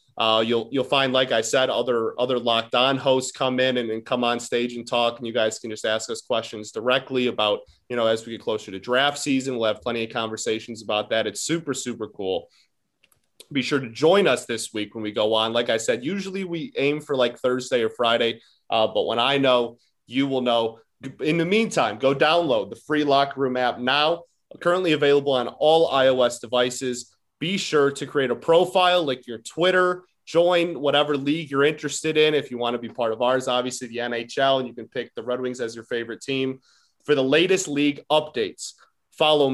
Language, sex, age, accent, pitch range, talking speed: English, male, 30-49, American, 120-145 Hz, 215 wpm